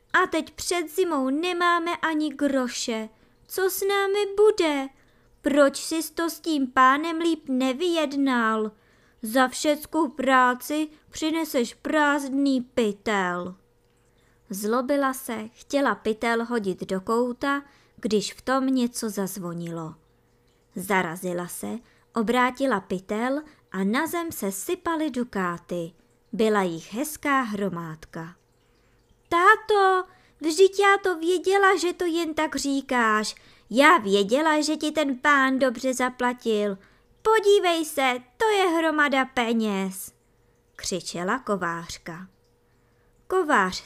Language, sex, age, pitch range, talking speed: Czech, male, 20-39, 200-310 Hz, 105 wpm